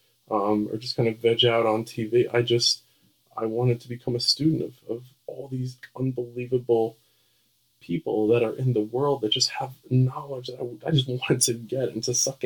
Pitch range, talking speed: 120-135 Hz, 200 wpm